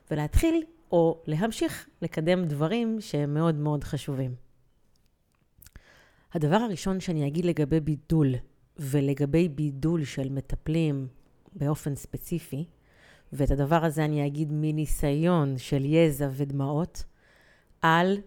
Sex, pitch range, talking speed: female, 145-190 Hz, 100 wpm